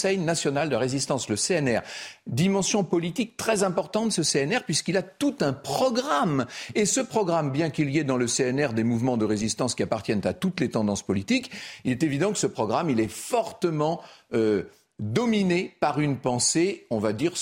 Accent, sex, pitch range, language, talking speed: French, male, 125-200 Hz, French, 195 wpm